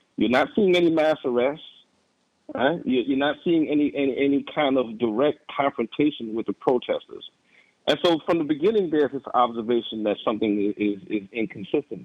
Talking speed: 165 wpm